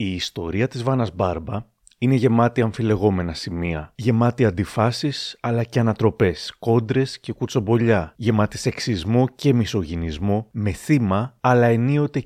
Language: Greek